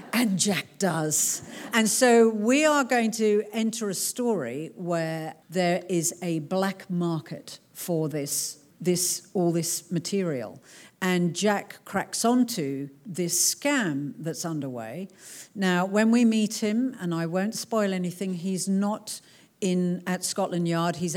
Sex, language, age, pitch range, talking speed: female, English, 50-69, 165-195 Hz, 140 wpm